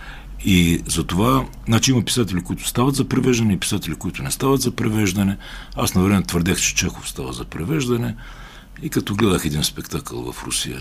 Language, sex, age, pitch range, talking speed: Bulgarian, male, 60-79, 85-130 Hz, 185 wpm